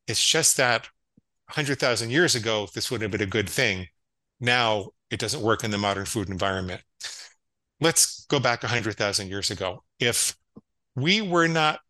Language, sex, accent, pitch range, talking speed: English, male, American, 100-125 Hz, 160 wpm